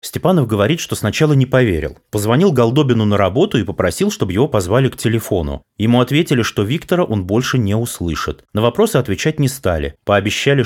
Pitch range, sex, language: 100-135 Hz, male, Russian